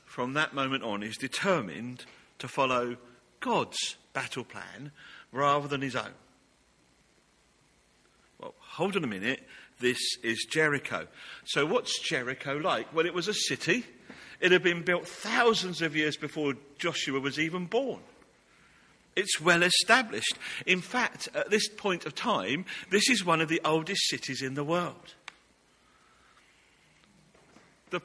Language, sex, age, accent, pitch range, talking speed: English, male, 50-69, British, 135-195 Hz, 140 wpm